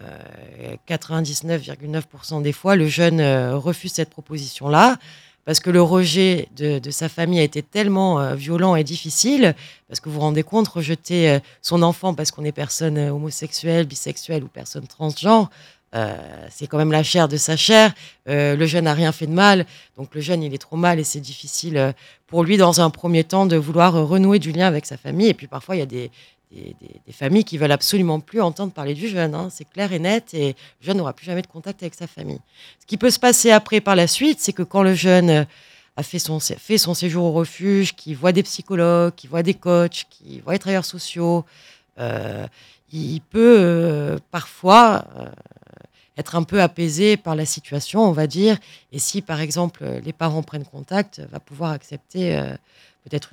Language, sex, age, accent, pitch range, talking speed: French, female, 30-49, French, 150-185 Hz, 205 wpm